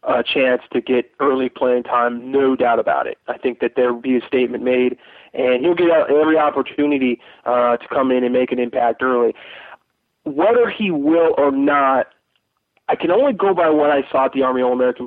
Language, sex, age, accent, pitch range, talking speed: English, male, 20-39, American, 130-155 Hz, 205 wpm